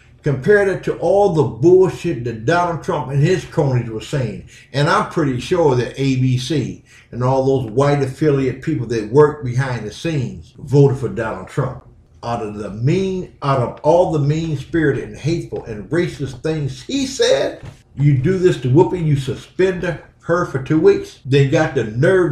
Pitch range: 120-155 Hz